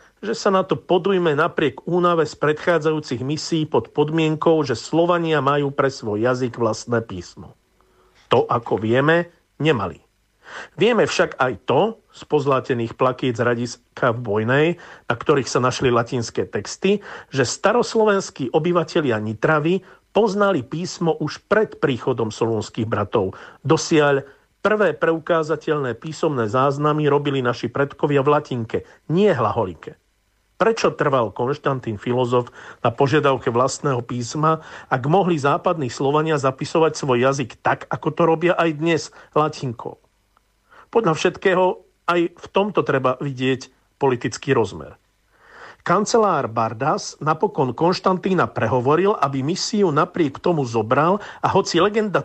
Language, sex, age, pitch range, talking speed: Slovak, male, 50-69, 125-170 Hz, 125 wpm